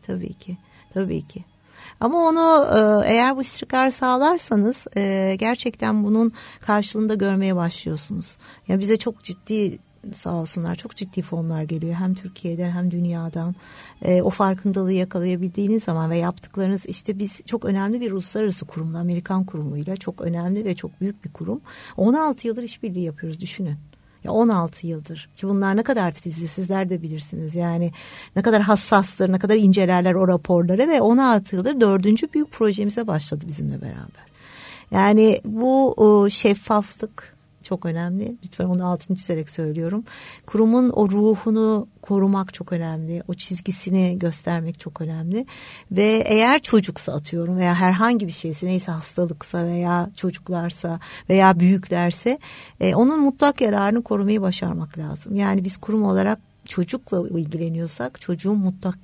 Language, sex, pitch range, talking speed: Turkish, female, 170-215 Hz, 140 wpm